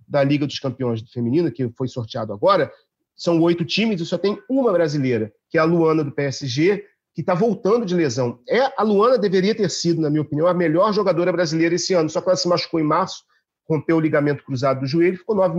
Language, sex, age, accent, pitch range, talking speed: Portuguese, male, 40-59, Brazilian, 135-175 Hz, 225 wpm